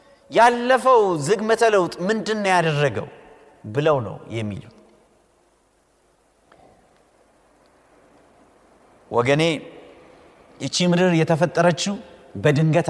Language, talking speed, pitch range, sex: Amharic, 55 wpm, 160-260 Hz, male